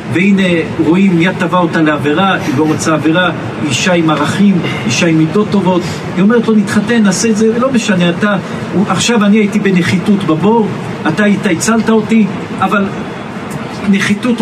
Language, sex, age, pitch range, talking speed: Hebrew, male, 50-69, 155-200 Hz, 160 wpm